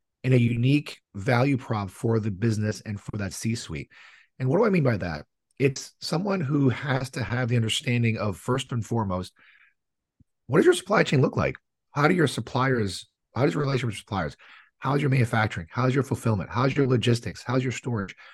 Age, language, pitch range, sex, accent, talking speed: 40-59, English, 110-140 Hz, male, American, 195 wpm